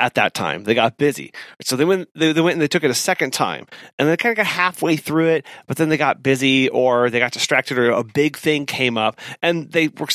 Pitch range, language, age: 130-175 Hz, English, 30-49